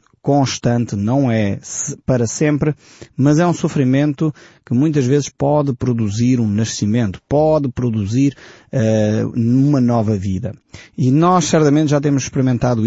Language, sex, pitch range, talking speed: Portuguese, male, 115-150 Hz, 125 wpm